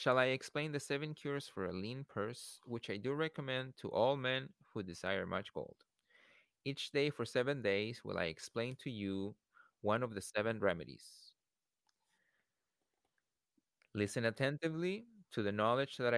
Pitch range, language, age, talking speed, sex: 105-130 Hz, English, 30-49, 155 wpm, male